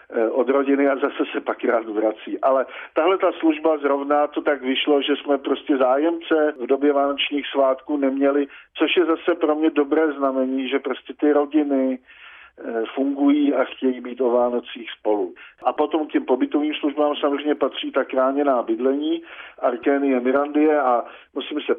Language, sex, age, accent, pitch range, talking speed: Czech, male, 50-69, native, 130-150 Hz, 160 wpm